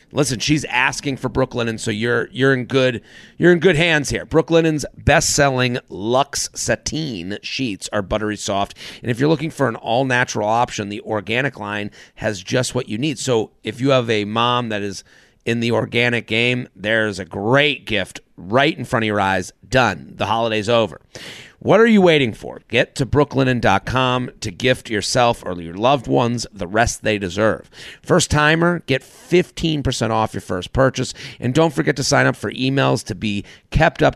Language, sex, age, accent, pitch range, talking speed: English, male, 30-49, American, 105-130 Hz, 185 wpm